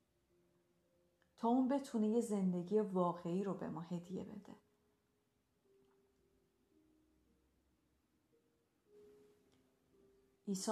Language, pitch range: Persian, 175-225 Hz